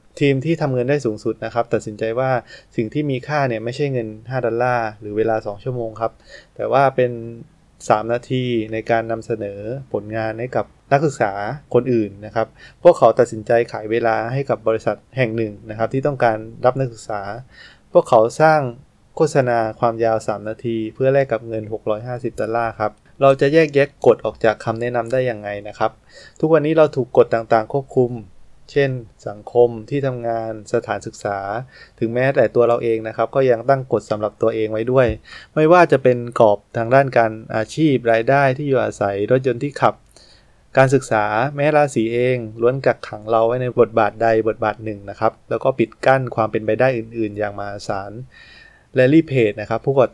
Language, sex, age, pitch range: Thai, male, 20-39, 110-130 Hz